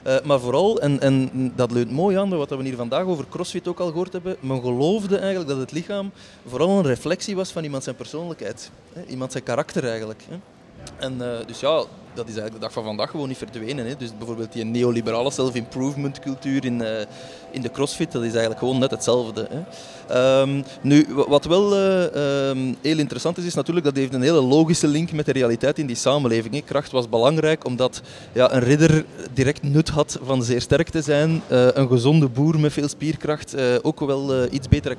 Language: Dutch